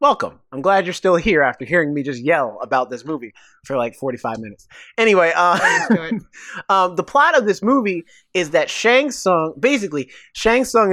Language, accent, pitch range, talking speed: English, American, 160-235 Hz, 180 wpm